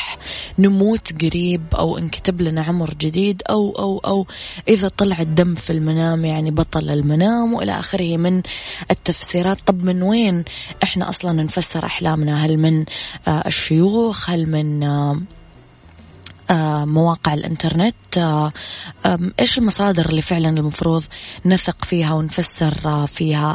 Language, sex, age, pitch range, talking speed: Arabic, female, 20-39, 160-190 Hz, 115 wpm